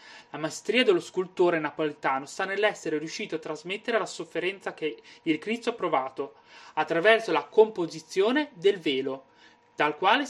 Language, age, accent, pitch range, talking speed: Italian, 30-49, native, 160-230 Hz, 140 wpm